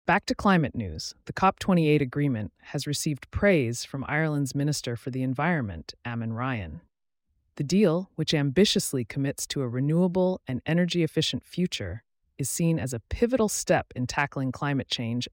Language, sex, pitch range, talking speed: English, female, 120-165 Hz, 155 wpm